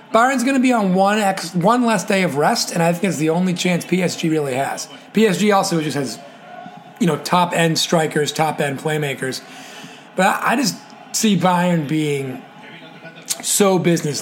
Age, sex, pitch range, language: 30-49, male, 145-200 Hz, English